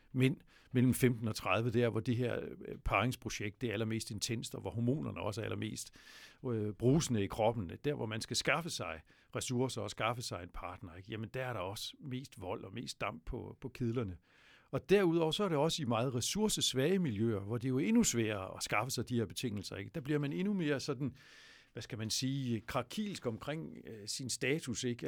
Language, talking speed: Danish, 210 wpm